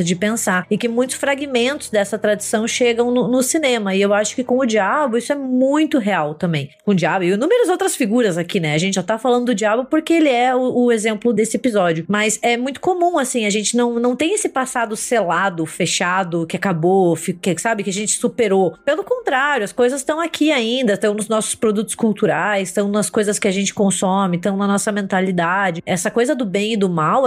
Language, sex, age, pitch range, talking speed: Portuguese, female, 20-39, 200-270 Hz, 220 wpm